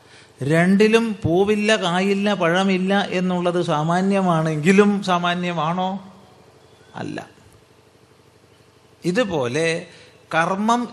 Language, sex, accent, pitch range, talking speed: Malayalam, male, native, 135-195 Hz, 55 wpm